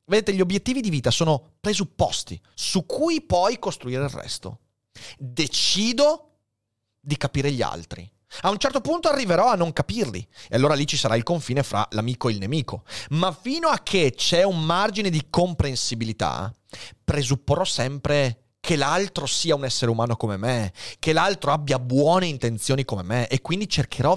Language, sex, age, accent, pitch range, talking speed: Italian, male, 30-49, native, 115-175 Hz, 165 wpm